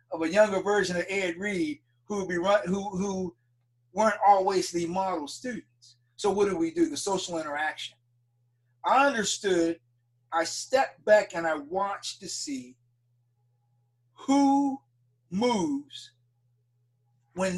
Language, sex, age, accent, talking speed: English, male, 40-59, American, 135 wpm